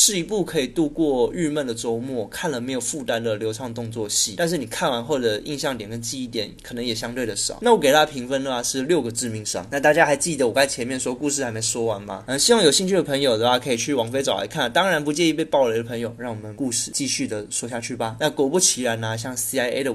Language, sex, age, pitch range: Chinese, male, 20-39, 115-150 Hz